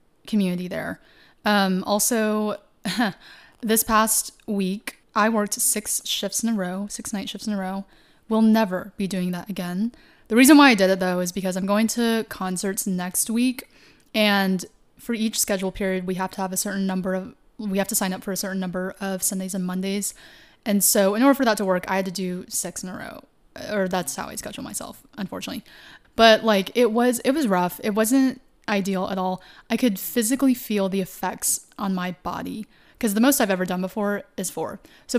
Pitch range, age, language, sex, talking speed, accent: 190-225 Hz, 20-39, English, female, 205 wpm, American